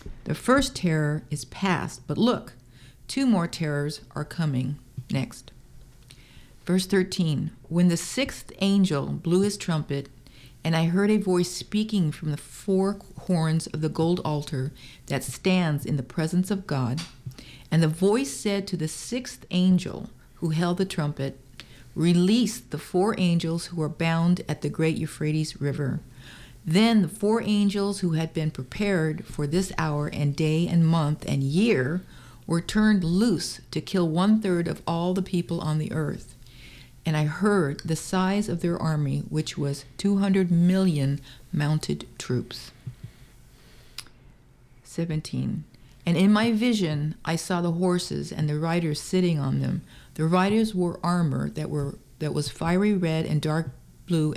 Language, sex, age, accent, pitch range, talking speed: English, female, 50-69, American, 145-185 Hz, 155 wpm